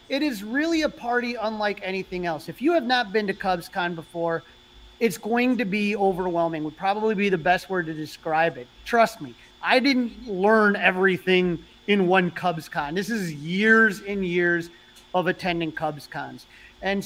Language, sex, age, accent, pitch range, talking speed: English, male, 30-49, American, 180-220 Hz, 170 wpm